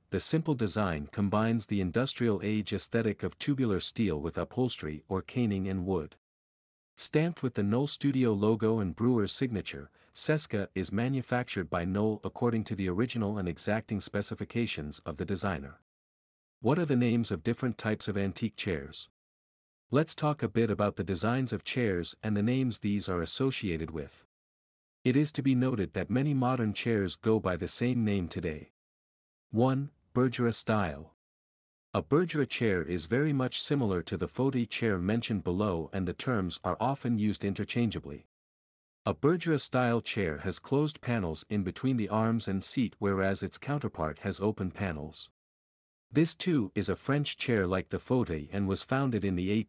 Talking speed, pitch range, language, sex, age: 165 wpm, 95-120 Hz, English, male, 50-69